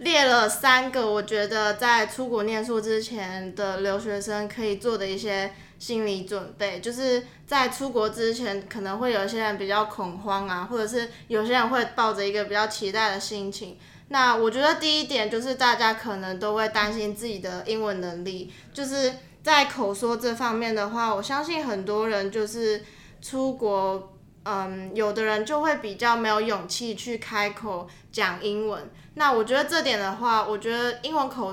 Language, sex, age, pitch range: Chinese, female, 20-39, 200-235 Hz